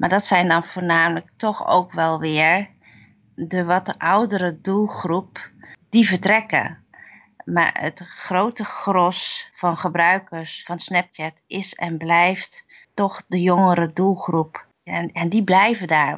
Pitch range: 170-195 Hz